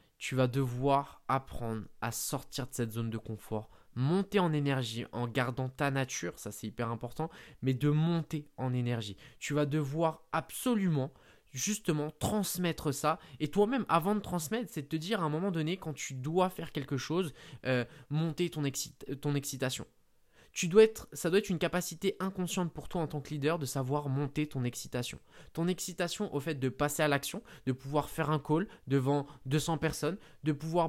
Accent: French